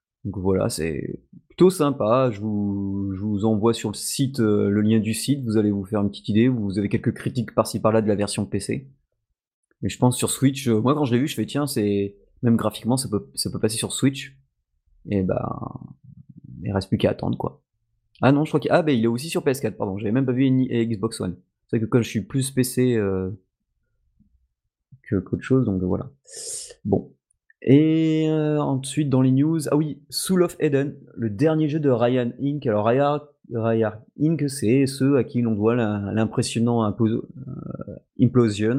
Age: 30-49